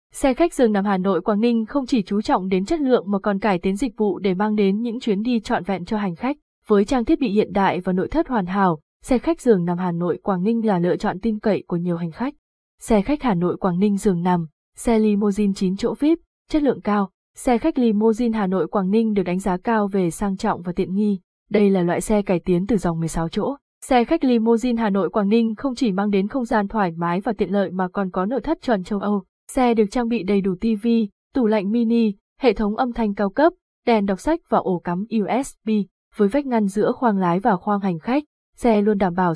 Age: 20-39